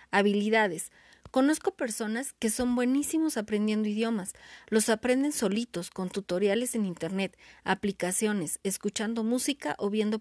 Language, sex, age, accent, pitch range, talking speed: Spanish, female, 30-49, Mexican, 195-255 Hz, 120 wpm